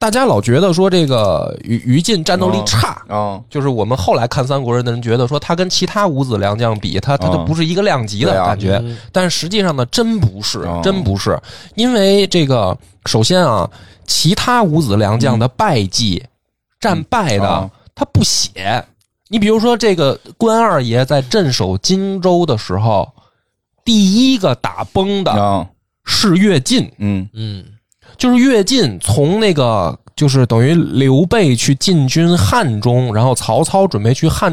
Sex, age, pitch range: male, 20-39, 110-180 Hz